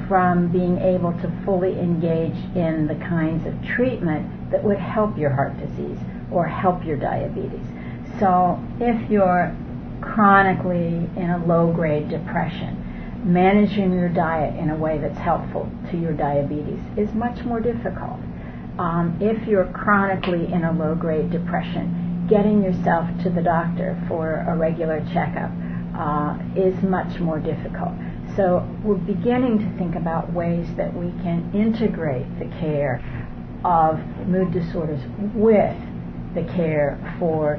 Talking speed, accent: 135 wpm, American